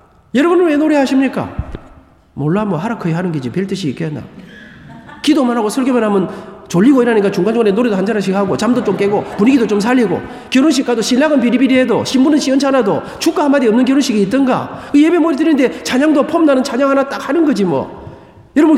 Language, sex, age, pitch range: Korean, male, 40-59, 220-285 Hz